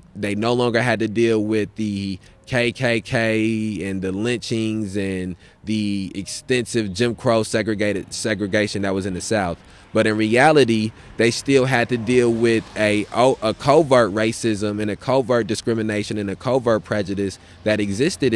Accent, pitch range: American, 100-115 Hz